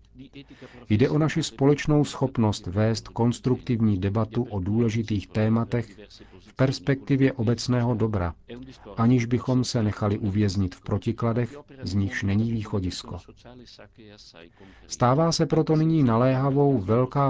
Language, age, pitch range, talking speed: Czech, 40-59, 100-120 Hz, 110 wpm